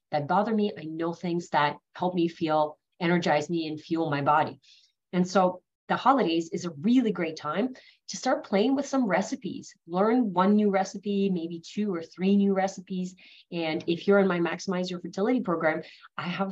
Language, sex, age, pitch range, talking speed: English, female, 30-49, 165-200 Hz, 190 wpm